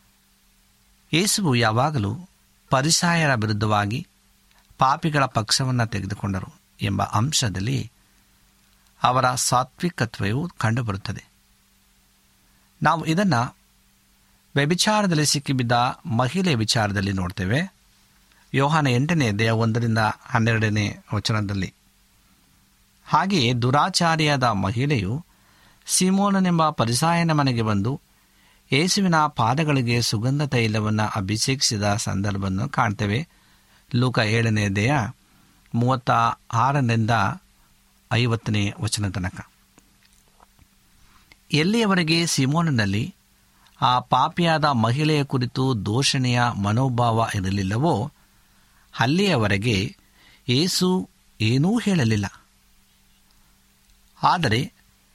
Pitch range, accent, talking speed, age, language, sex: 105-150 Hz, native, 65 wpm, 50-69, Kannada, male